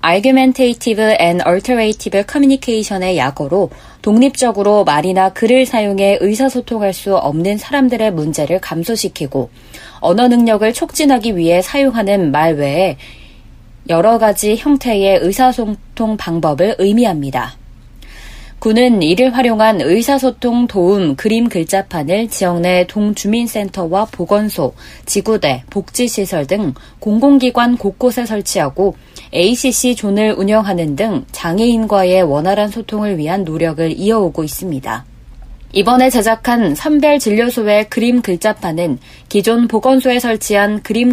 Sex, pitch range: female, 180-235 Hz